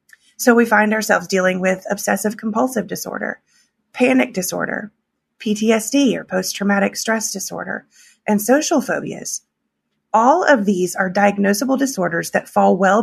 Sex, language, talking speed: female, English, 130 wpm